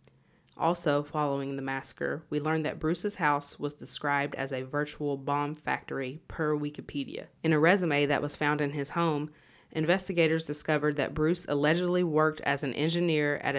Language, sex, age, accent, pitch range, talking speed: English, female, 30-49, American, 145-160 Hz, 165 wpm